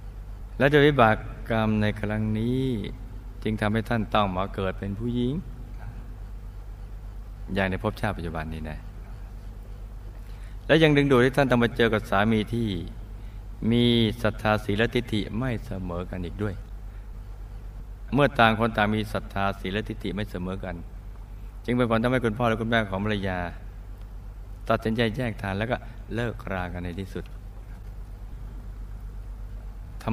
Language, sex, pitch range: Thai, male, 100-110 Hz